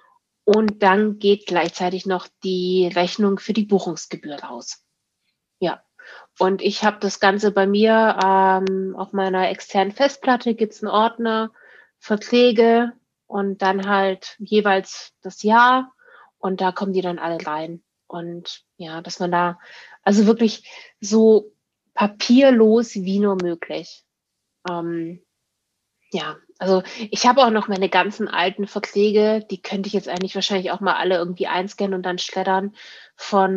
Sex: female